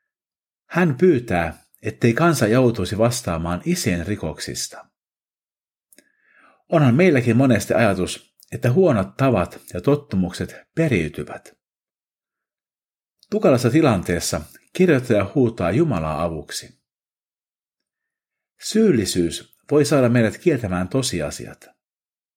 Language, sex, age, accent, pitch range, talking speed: Finnish, male, 50-69, native, 90-145 Hz, 80 wpm